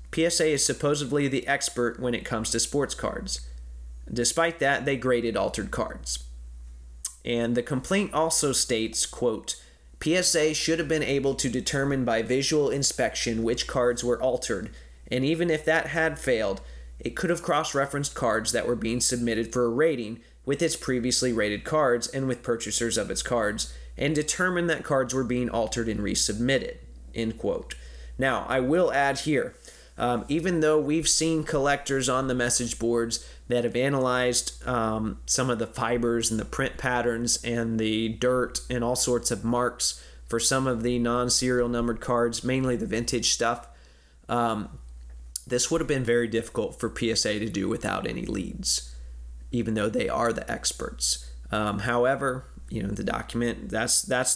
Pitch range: 110-135 Hz